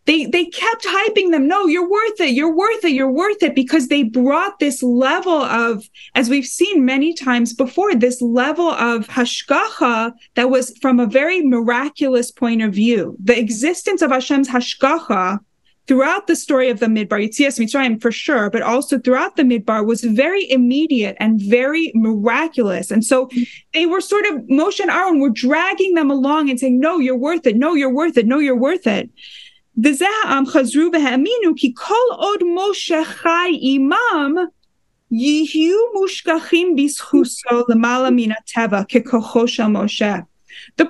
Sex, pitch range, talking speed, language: female, 240-330 Hz, 140 wpm, English